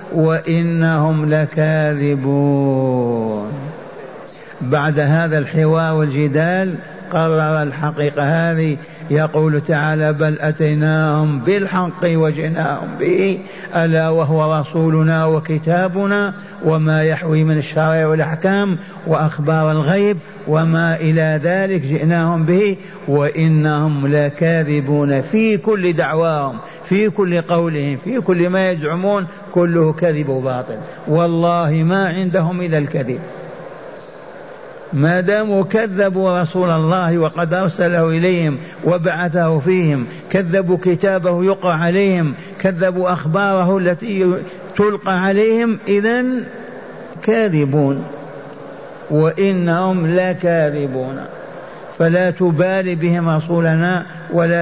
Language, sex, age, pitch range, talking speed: Arabic, male, 50-69, 155-185 Hz, 90 wpm